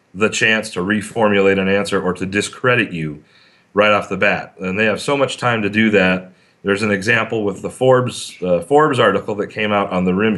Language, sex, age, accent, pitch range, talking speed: English, male, 40-59, American, 100-115 Hz, 220 wpm